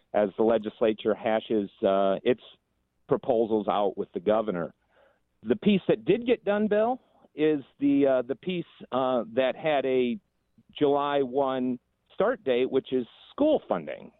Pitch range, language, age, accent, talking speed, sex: 115-150 Hz, English, 50-69, American, 150 wpm, male